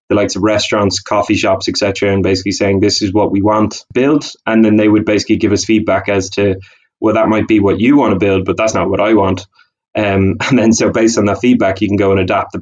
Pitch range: 100-110 Hz